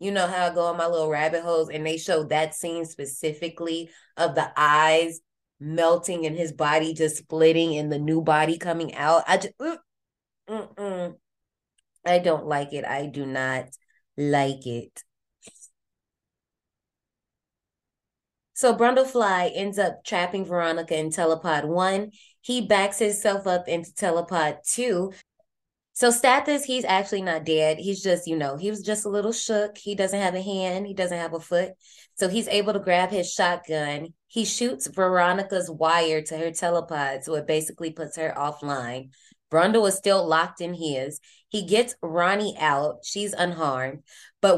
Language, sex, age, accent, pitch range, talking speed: English, female, 20-39, American, 160-200 Hz, 160 wpm